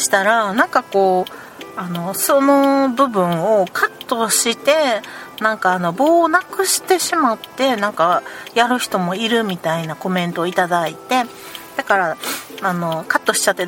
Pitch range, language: 175-255 Hz, Japanese